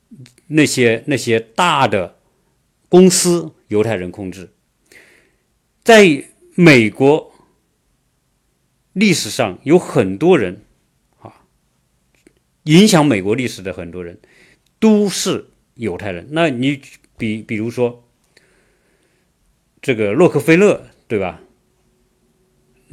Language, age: Chinese, 50-69